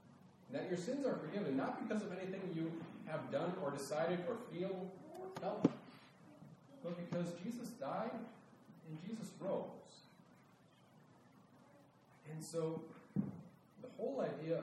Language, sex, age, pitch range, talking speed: English, male, 40-59, 165-225 Hz, 125 wpm